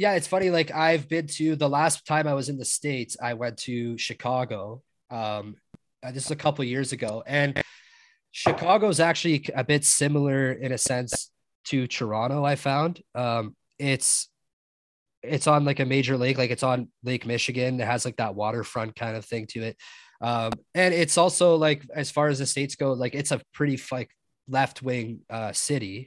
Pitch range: 120-150 Hz